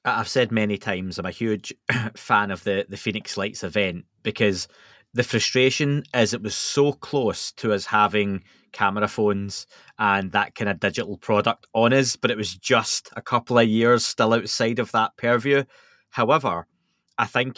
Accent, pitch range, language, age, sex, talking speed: British, 105-120 Hz, English, 20-39, male, 175 wpm